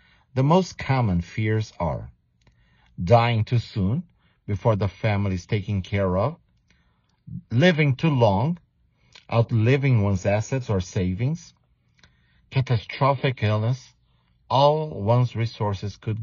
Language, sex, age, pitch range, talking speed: English, male, 50-69, 95-135 Hz, 105 wpm